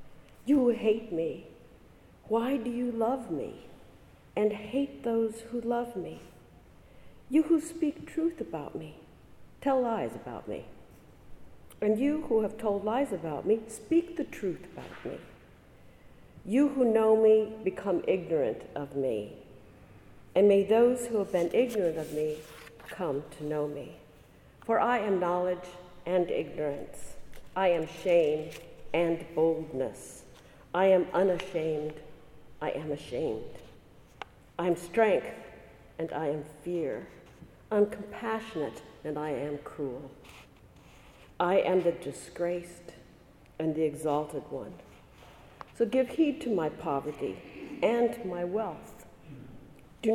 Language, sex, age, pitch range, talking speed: English, female, 50-69, 155-225 Hz, 130 wpm